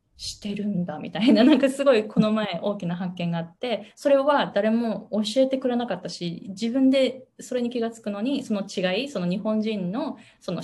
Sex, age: female, 20-39